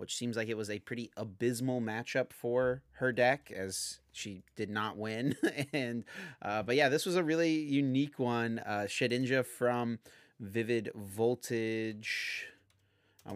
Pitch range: 105-135 Hz